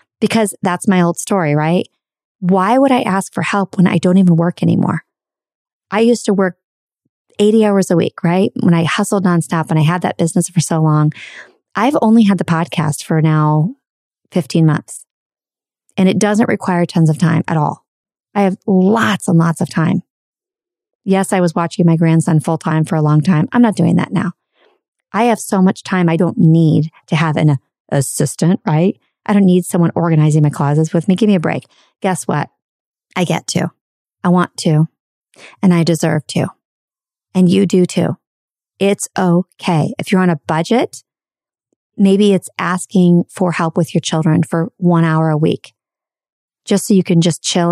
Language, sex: English, female